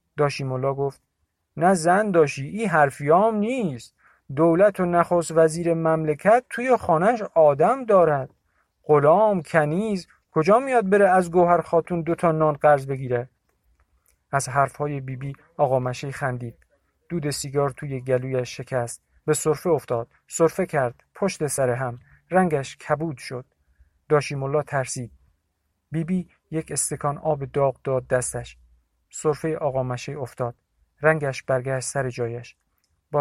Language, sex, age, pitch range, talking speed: Persian, male, 50-69, 130-185 Hz, 130 wpm